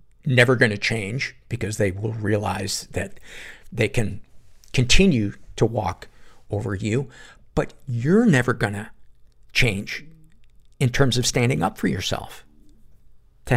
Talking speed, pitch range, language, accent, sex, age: 135 wpm, 110-135 Hz, English, American, male, 50-69